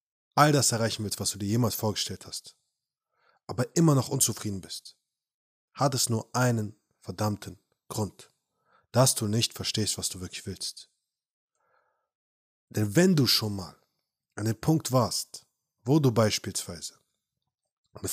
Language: German